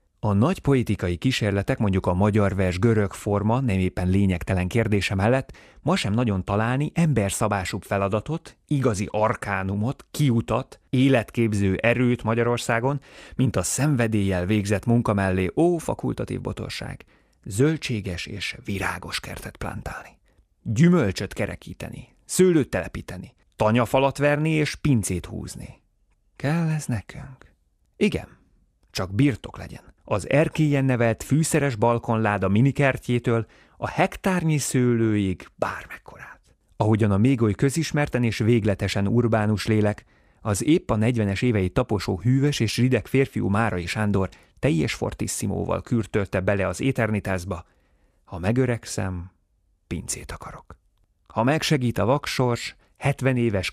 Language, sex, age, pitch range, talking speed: Hungarian, male, 30-49, 100-125 Hz, 115 wpm